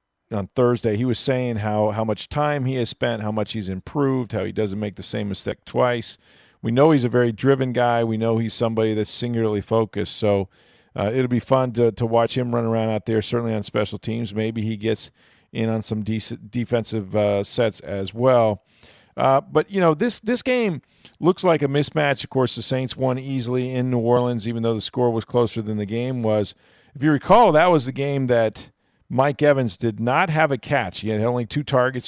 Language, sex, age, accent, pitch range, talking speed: English, male, 40-59, American, 110-125 Hz, 220 wpm